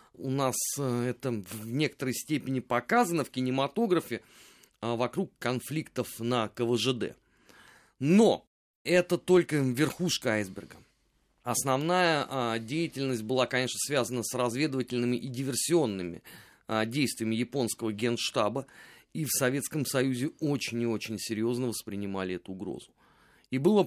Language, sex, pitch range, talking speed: Russian, male, 110-145 Hz, 110 wpm